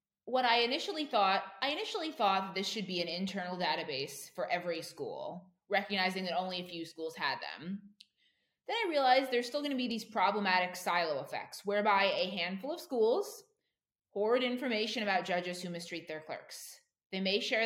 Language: English